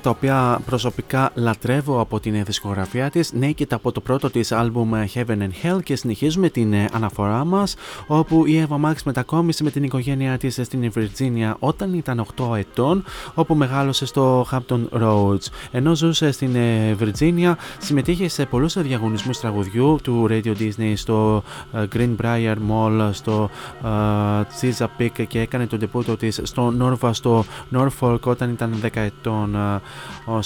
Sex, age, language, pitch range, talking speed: male, 20-39, Greek, 110-140 Hz, 150 wpm